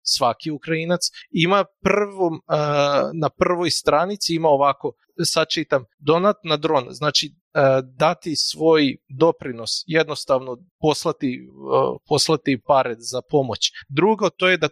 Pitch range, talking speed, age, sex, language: 140-175 Hz, 120 wpm, 30-49, male, Croatian